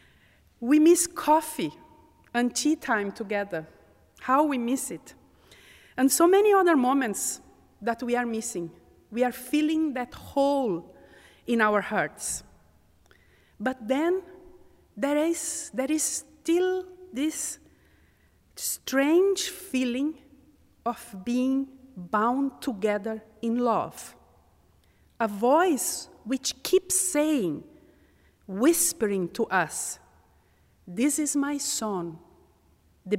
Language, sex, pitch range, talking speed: English, female, 200-295 Hz, 100 wpm